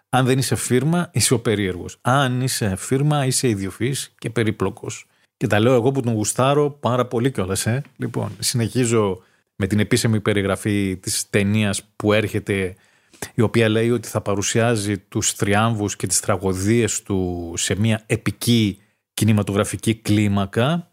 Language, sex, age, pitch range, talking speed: Greek, male, 30-49, 105-125 Hz, 150 wpm